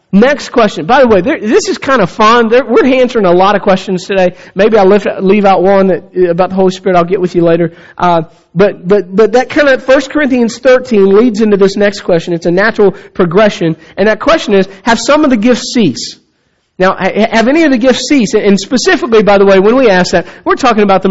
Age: 40-59